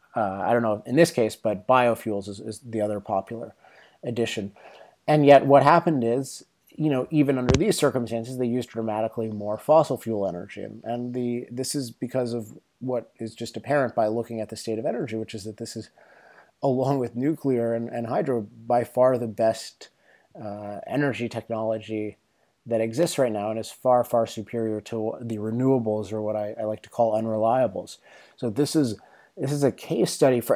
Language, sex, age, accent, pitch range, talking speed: English, male, 30-49, American, 110-130 Hz, 190 wpm